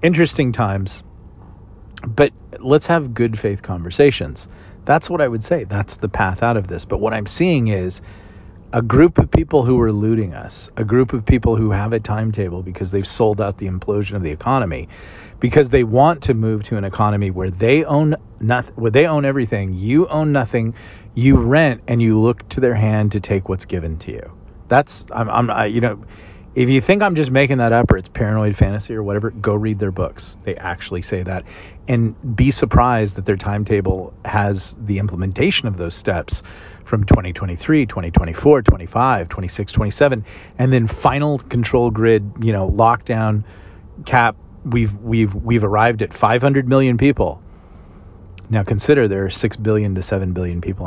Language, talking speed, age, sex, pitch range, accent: English, 185 wpm, 40-59, male, 95-120 Hz, American